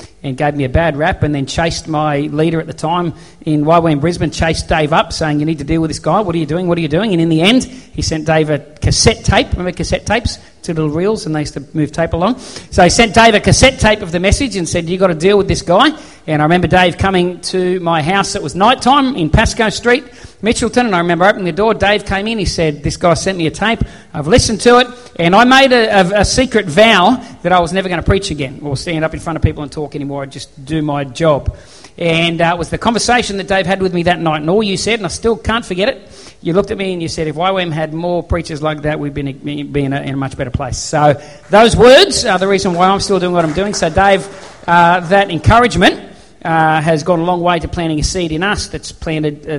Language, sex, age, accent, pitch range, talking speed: English, male, 40-59, Australian, 150-195 Hz, 270 wpm